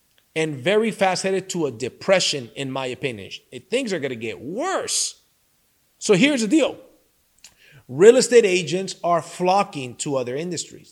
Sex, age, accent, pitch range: male, 30-49, American, 160-215 Hz